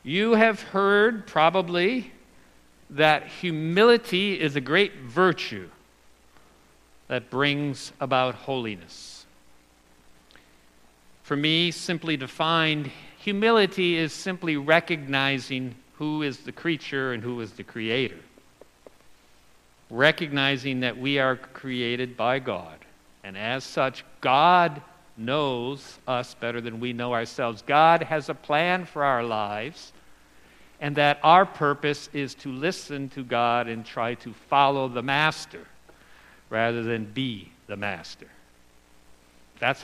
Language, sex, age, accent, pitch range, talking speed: English, male, 50-69, American, 110-155 Hz, 115 wpm